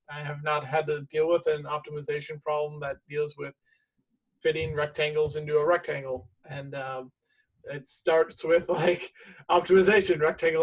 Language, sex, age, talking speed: English, male, 30-49, 145 wpm